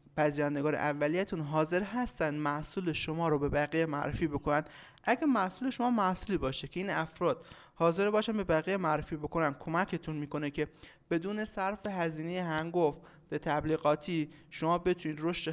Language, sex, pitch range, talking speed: Persian, male, 150-185 Hz, 145 wpm